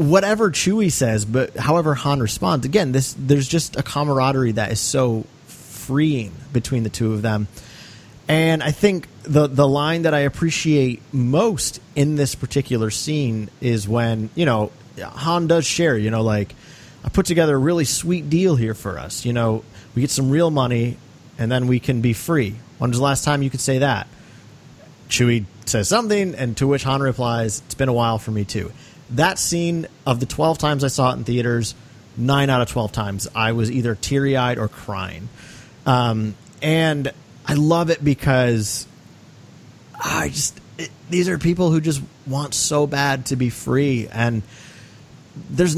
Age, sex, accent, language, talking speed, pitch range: 30-49, male, American, English, 180 wpm, 115-150 Hz